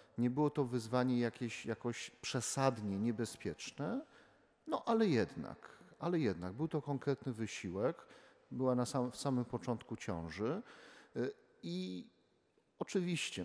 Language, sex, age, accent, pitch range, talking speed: Polish, male, 40-59, native, 110-145 Hz, 115 wpm